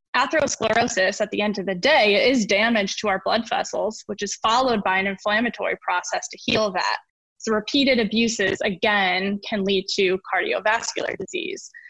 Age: 10-29